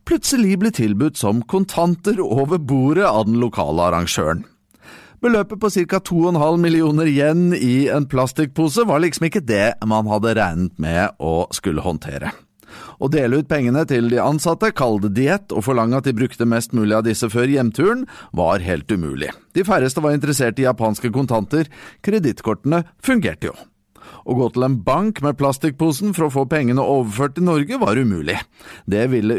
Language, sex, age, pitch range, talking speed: English, male, 30-49, 110-165 Hz, 165 wpm